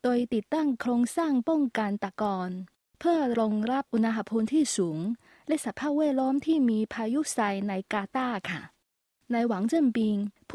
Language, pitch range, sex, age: Thai, 205-260 Hz, female, 20-39